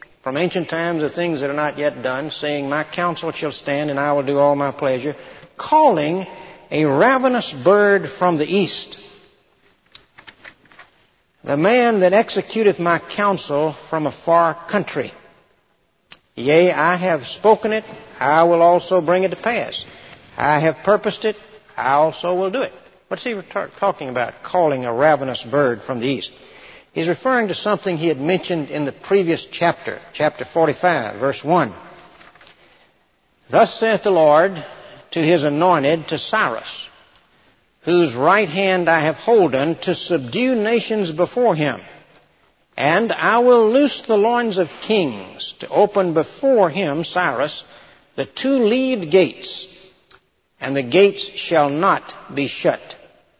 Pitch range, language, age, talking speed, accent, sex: 150-200 Hz, English, 60-79, 145 wpm, American, male